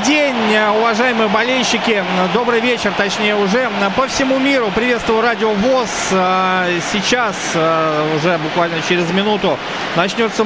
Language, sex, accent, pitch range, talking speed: Russian, male, native, 190-230 Hz, 110 wpm